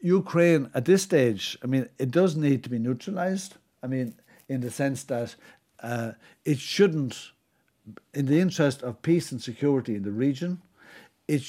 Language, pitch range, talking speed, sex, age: English, 115-150 Hz, 165 wpm, male, 60-79